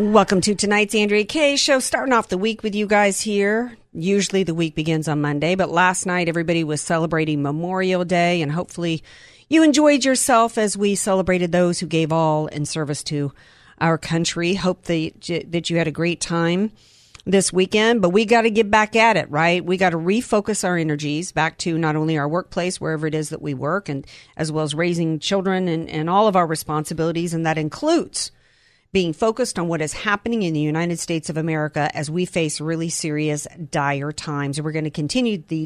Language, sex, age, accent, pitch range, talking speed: English, female, 40-59, American, 160-205 Hz, 205 wpm